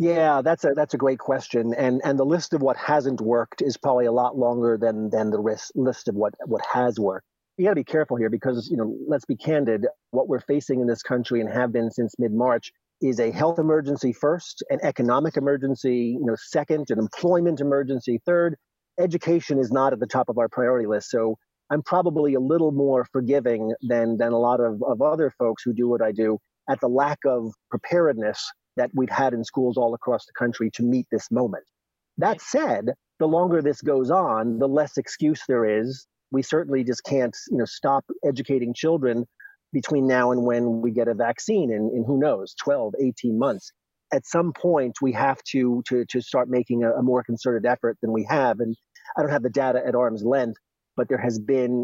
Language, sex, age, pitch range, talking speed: English, male, 40-59, 120-140 Hz, 210 wpm